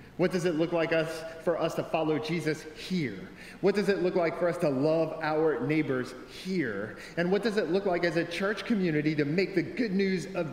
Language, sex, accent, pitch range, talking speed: English, male, American, 130-170 Hz, 220 wpm